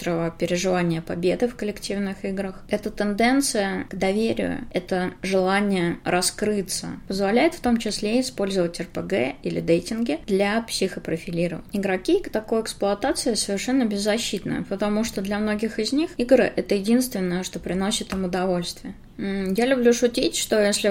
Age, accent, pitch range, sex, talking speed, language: 20-39, native, 180-220 Hz, female, 130 wpm, Russian